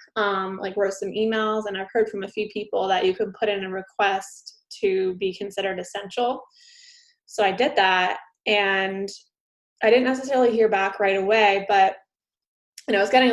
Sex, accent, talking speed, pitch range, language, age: female, American, 180 wpm, 200-235 Hz, English, 20-39